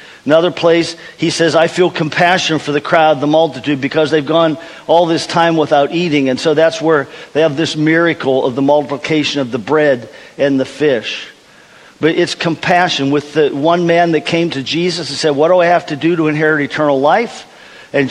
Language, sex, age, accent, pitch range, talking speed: English, male, 50-69, American, 145-165 Hz, 200 wpm